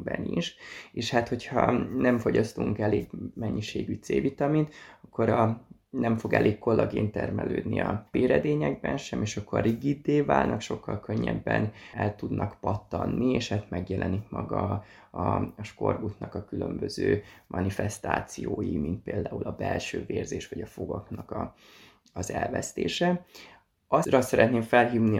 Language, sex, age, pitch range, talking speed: Hungarian, male, 20-39, 100-120 Hz, 125 wpm